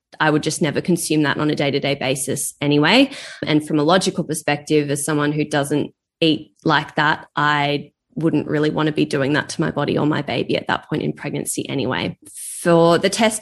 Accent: Australian